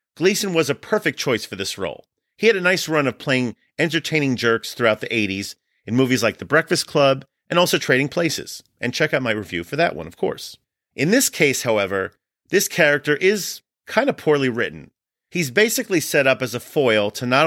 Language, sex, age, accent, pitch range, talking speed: English, male, 40-59, American, 115-165 Hz, 205 wpm